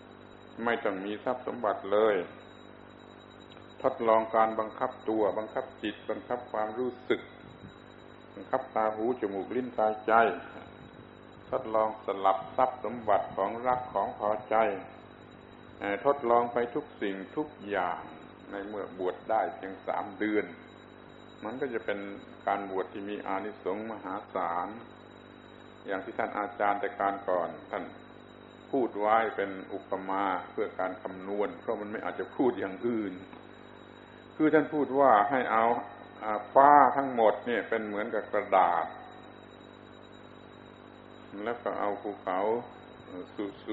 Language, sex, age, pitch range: Thai, male, 60-79, 100-120 Hz